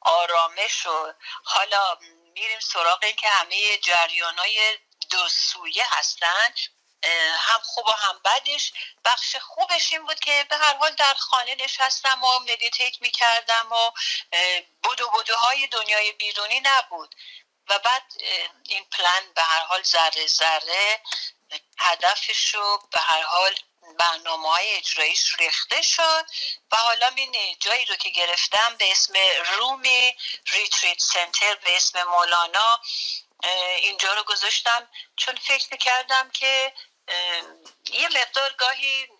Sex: female